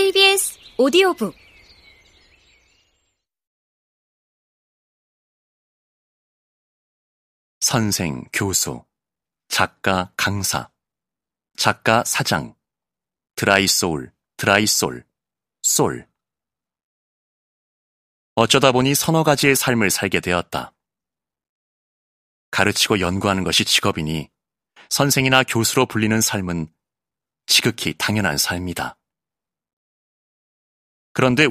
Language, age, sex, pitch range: Korean, 30-49, male, 95-130 Hz